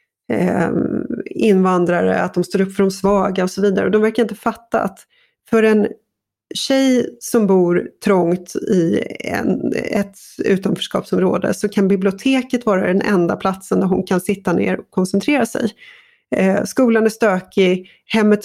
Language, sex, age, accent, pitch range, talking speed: Swedish, female, 30-49, native, 190-230 Hz, 145 wpm